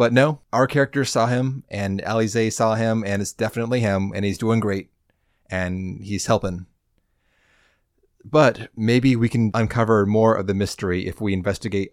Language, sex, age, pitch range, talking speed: English, male, 20-39, 100-120 Hz, 165 wpm